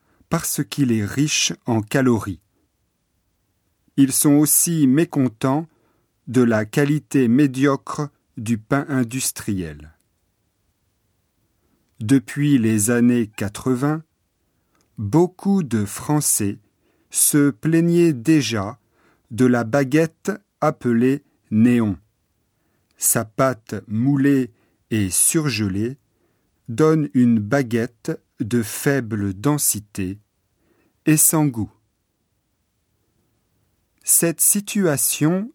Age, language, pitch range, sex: 40-59, Japanese, 105-145 Hz, male